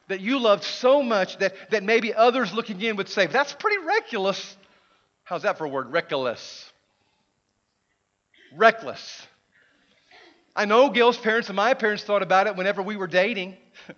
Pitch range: 175-225 Hz